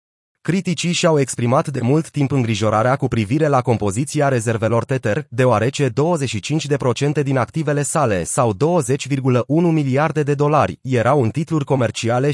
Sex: male